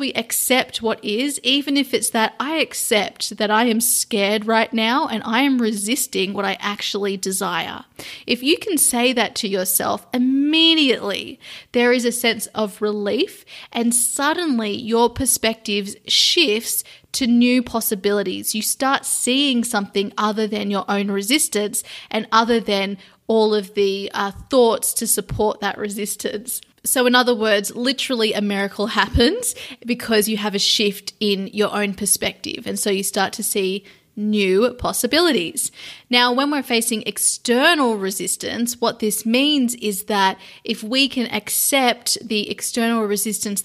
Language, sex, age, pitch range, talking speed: English, female, 20-39, 205-250 Hz, 150 wpm